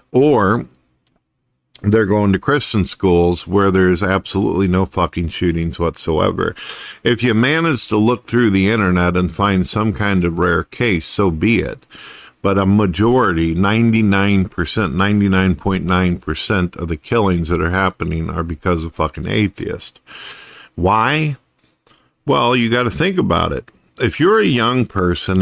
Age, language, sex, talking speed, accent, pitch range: 50-69, English, male, 145 wpm, American, 90-110 Hz